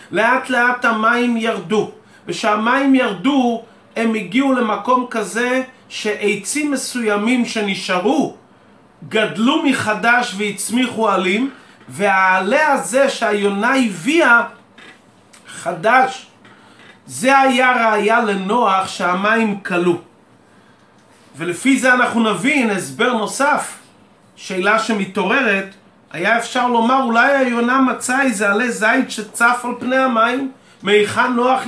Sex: male